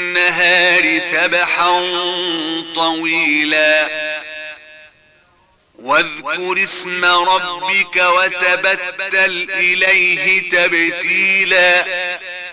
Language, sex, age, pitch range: Arabic, male, 40-59, 165-185 Hz